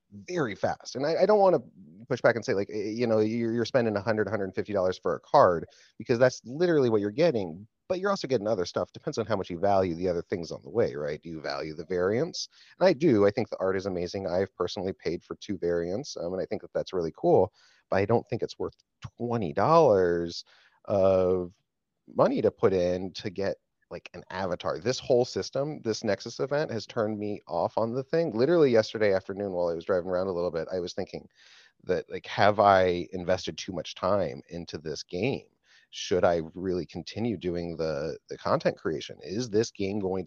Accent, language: American, English